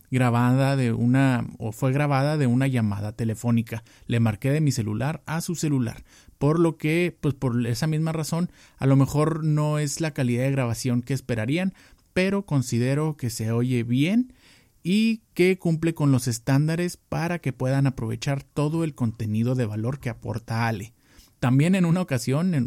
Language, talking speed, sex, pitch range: Spanish, 170 wpm, male, 120-165 Hz